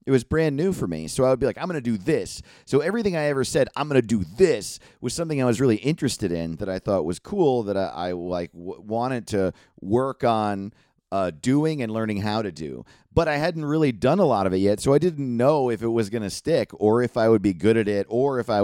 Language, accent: English, American